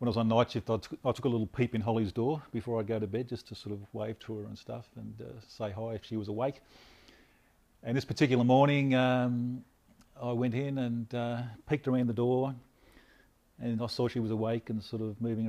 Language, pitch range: English, 105-125 Hz